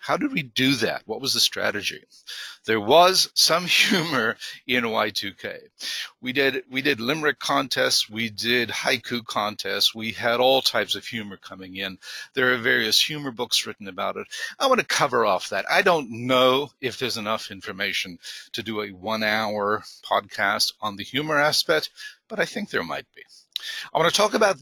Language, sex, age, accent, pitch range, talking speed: English, male, 50-69, American, 110-155 Hz, 180 wpm